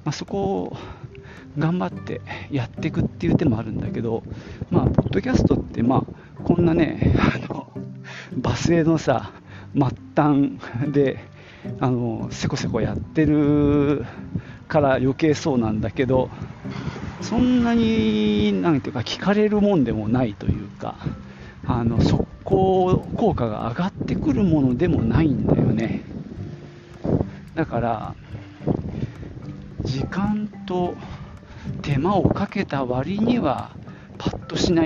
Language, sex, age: Japanese, male, 40-59